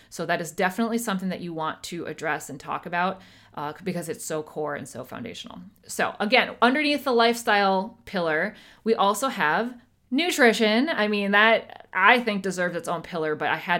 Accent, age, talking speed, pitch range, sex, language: American, 30-49, 185 wpm, 155-210 Hz, female, English